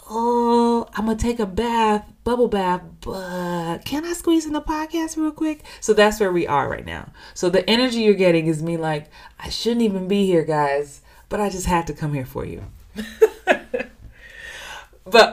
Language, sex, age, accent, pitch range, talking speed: English, female, 20-39, American, 140-200 Hz, 190 wpm